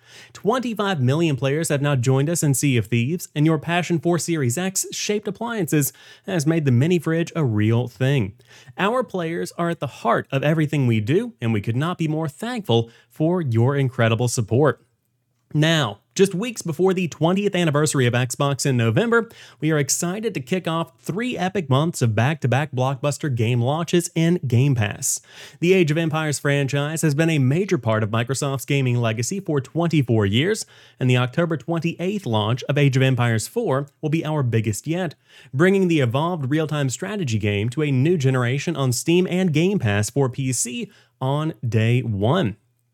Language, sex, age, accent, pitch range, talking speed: English, male, 30-49, American, 125-170 Hz, 175 wpm